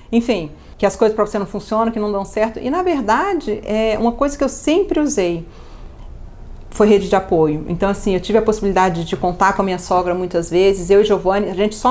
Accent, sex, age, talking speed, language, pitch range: Brazilian, female, 40-59, 230 wpm, Portuguese, 190-245 Hz